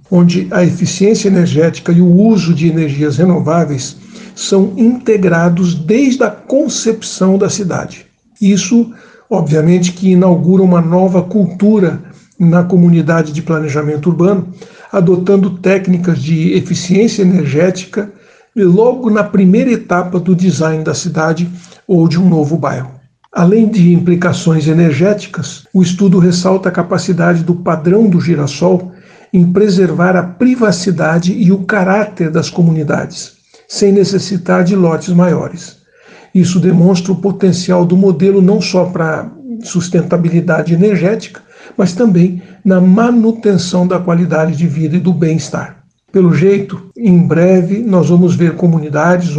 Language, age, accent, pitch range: Portuguese, 60-79, Brazilian, 170-195 Hz